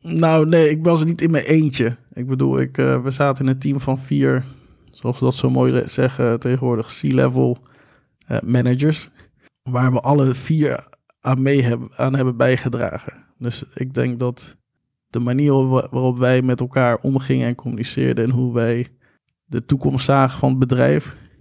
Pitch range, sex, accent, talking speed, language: 120-135 Hz, male, Dutch, 175 wpm, Dutch